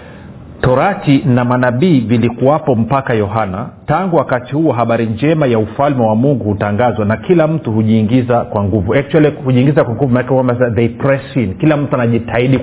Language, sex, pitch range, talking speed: Swahili, male, 110-140 Hz, 140 wpm